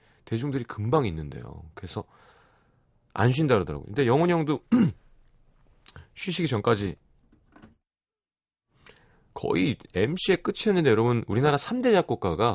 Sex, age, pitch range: male, 30-49, 95-145 Hz